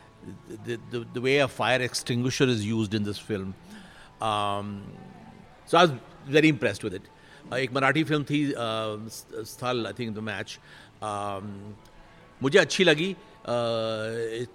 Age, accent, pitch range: 60-79, native, 105-125 Hz